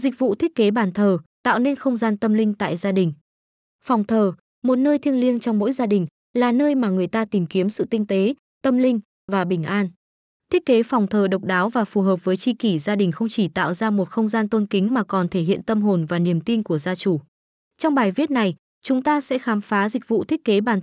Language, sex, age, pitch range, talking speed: Vietnamese, female, 20-39, 190-240 Hz, 255 wpm